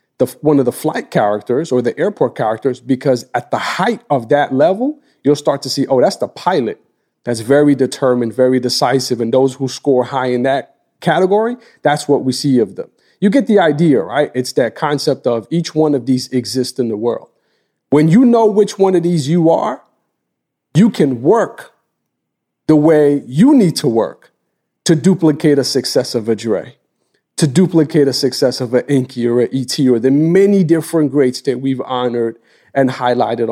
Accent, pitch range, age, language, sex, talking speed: American, 125-155 Hz, 40-59, English, male, 190 wpm